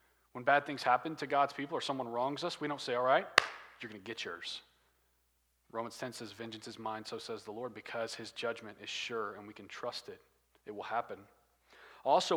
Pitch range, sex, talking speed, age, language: 125-175 Hz, male, 220 wpm, 40-59, English